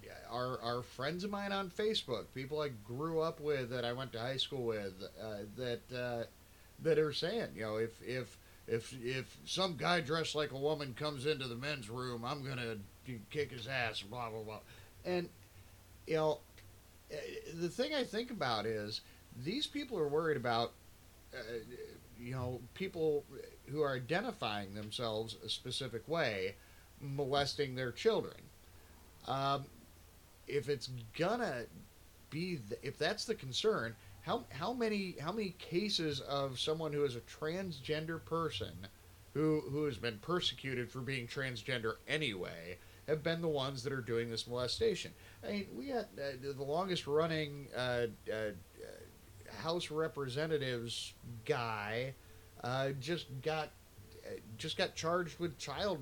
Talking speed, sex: 150 wpm, male